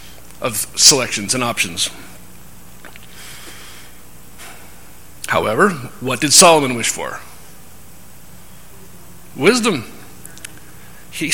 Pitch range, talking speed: 135-175 Hz, 65 wpm